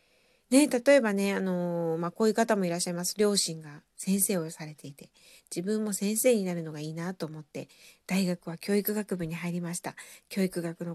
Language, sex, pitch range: Japanese, female, 185-250 Hz